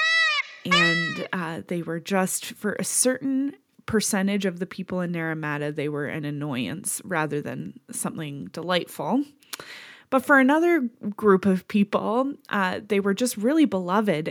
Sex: female